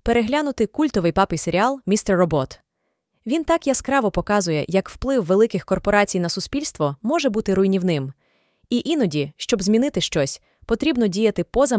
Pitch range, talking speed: 180-275 Hz, 135 wpm